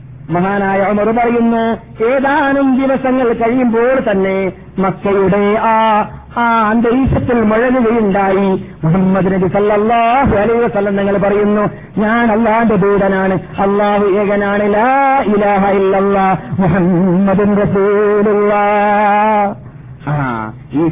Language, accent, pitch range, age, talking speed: Malayalam, native, 155-220 Hz, 50-69, 50 wpm